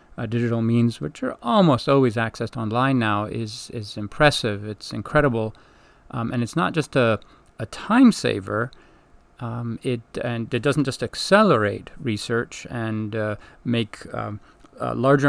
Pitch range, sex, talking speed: 110-140 Hz, male, 145 wpm